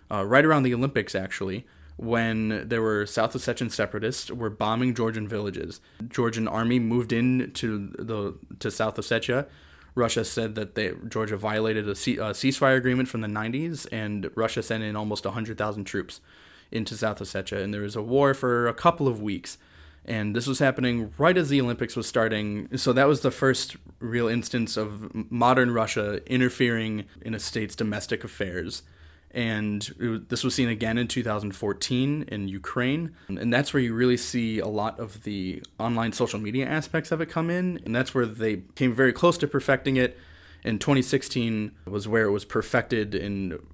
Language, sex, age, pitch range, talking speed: English, male, 20-39, 105-125 Hz, 180 wpm